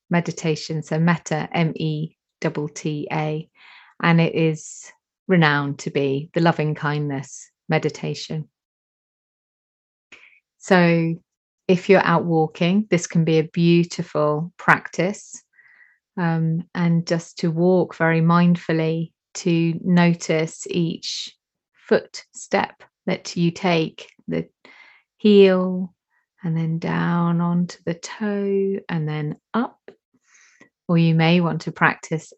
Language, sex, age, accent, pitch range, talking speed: English, female, 30-49, British, 160-180 Hz, 110 wpm